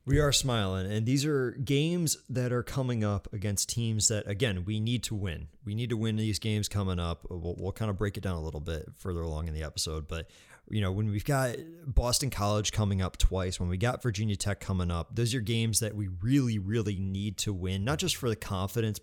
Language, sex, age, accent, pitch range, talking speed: English, male, 30-49, American, 95-120 Hz, 235 wpm